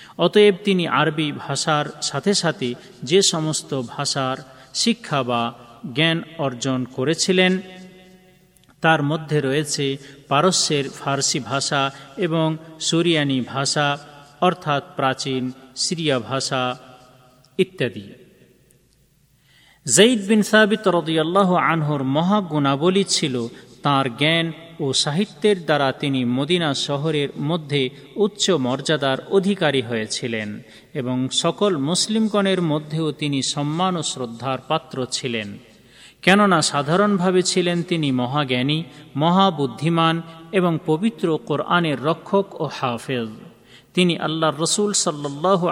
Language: Bengali